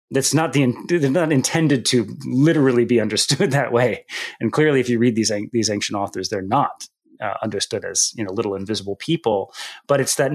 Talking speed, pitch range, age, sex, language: 215 wpm, 115-150 Hz, 30-49, male, English